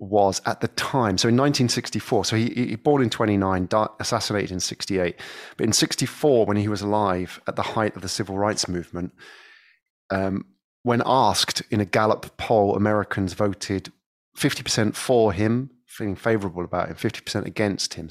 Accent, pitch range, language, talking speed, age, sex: British, 95-120 Hz, English, 170 wpm, 30-49, male